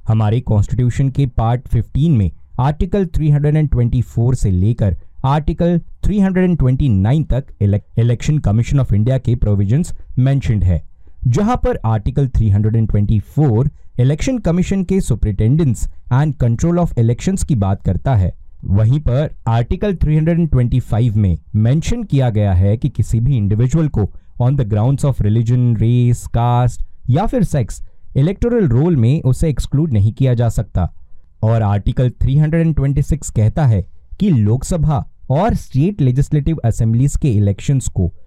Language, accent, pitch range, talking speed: Hindi, native, 105-145 Hz, 130 wpm